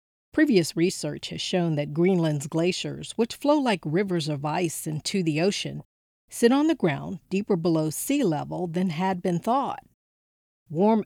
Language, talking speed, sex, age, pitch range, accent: English, 155 wpm, female, 40-59, 160-215 Hz, American